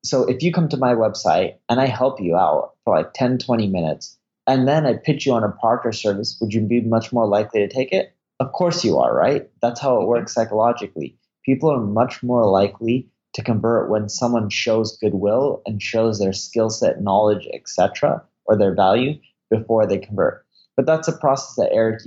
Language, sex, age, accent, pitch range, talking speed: English, male, 20-39, American, 105-130 Hz, 205 wpm